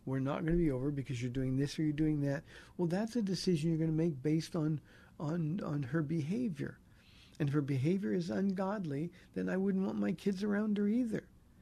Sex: male